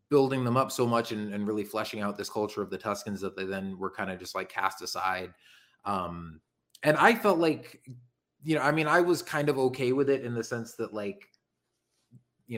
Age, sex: 30-49, male